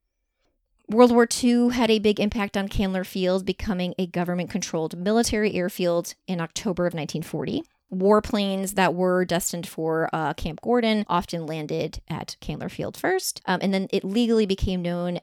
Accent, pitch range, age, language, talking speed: American, 175-220 Hz, 30-49, English, 160 wpm